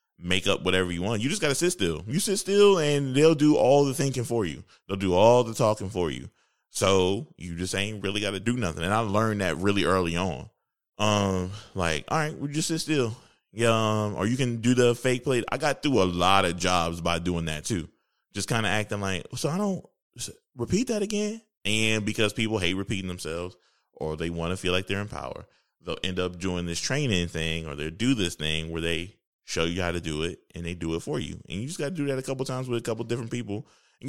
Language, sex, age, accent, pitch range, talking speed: English, male, 20-39, American, 85-120 Hz, 250 wpm